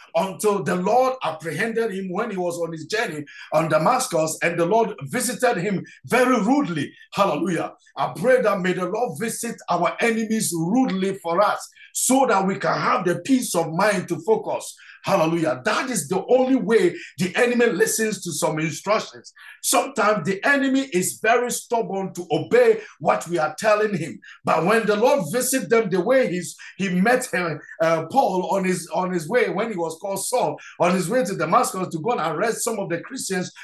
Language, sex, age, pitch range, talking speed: English, male, 50-69, 180-255 Hz, 190 wpm